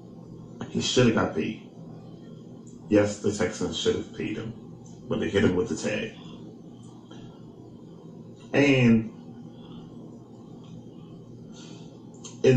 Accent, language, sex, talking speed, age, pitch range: American, English, male, 100 wpm, 30-49, 95-130 Hz